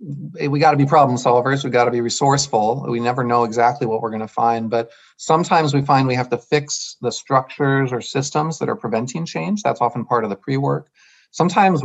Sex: male